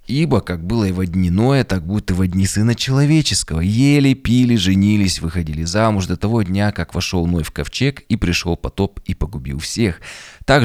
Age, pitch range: 20-39, 85-110 Hz